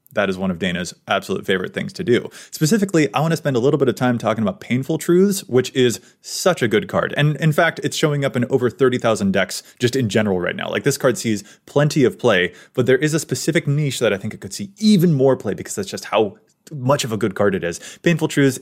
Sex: male